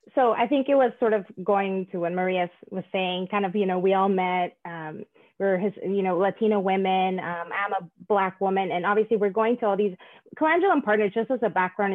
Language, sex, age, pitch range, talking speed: English, female, 20-39, 180-225 Hz, 230 wpm